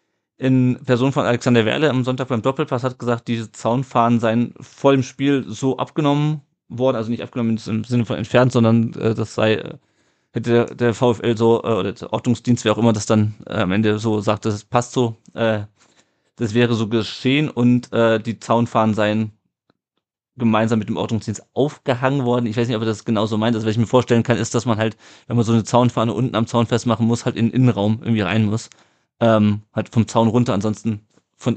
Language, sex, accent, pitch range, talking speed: German, male, German, 110-125 Hz, 210 wpm